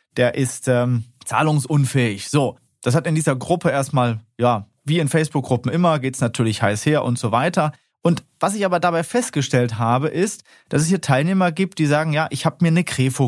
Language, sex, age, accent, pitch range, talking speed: German, male, 30-49, German, 125-155 Hz, 205 wpm